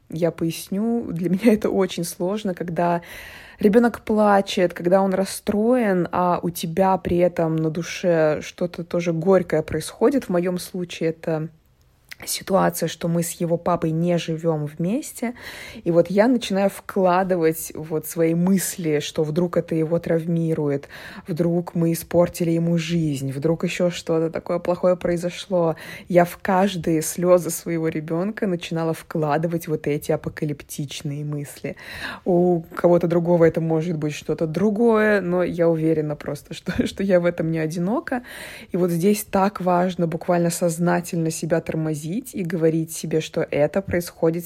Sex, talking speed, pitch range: female, 145 wpm, 165-200 Hz